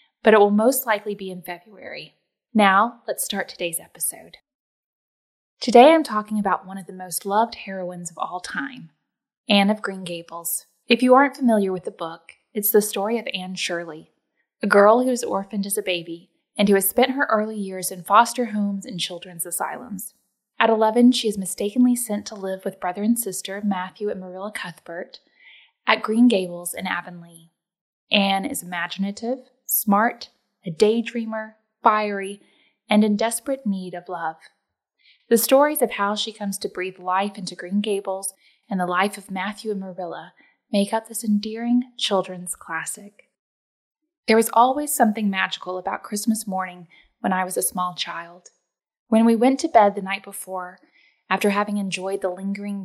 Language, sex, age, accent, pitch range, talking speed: English, female, 10-29, American, 185-225 Hz, 170 wpm